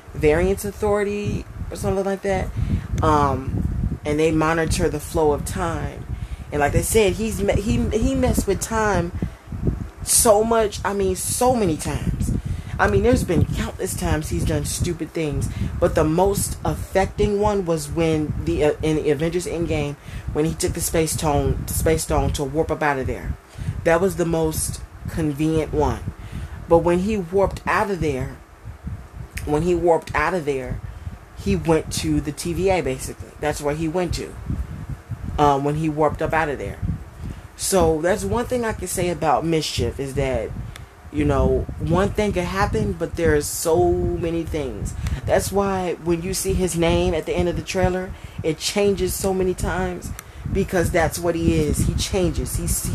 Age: 30-49